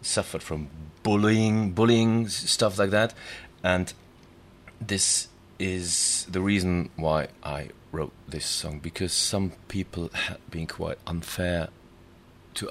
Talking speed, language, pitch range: 120 wpm, Hebrew, 80-95 Hz